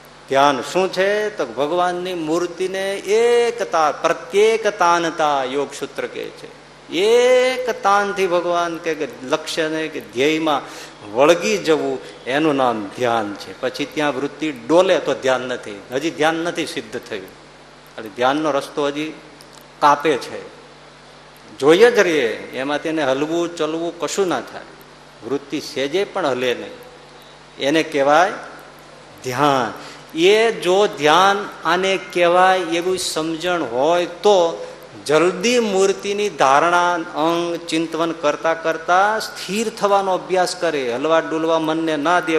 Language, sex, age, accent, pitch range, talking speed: Gujarati, male, 50-69, native, 145-190 Hz, 120 wpm